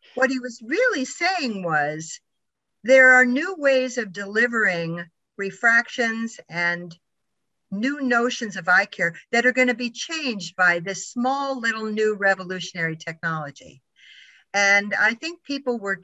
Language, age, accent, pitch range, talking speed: English, 50-69, American, 175-240 Hz, 140 wpm